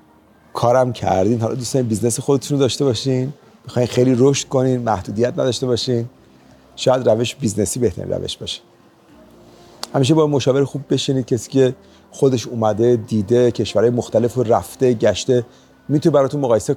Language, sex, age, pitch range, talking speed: Persian, male, 30-49, 110-135 Hz, 140 wpm